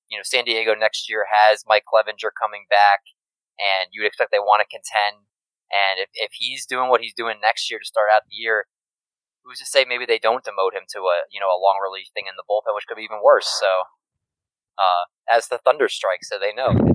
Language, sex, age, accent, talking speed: English, male, 20-39, American, 240 wpm